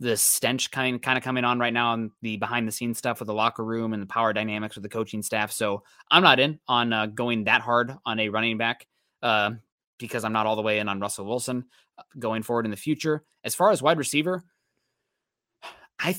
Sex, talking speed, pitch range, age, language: male, 230 wpm, 115-160 Hz, 20-39, English